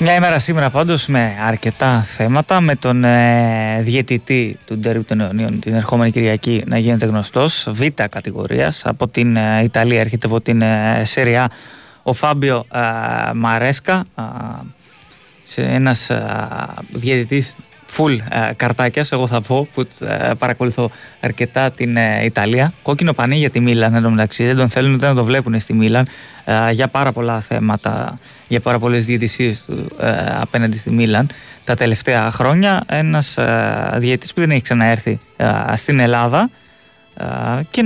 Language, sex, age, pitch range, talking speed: Greek, male, 20-39, 115-140 Hz, 155 wpm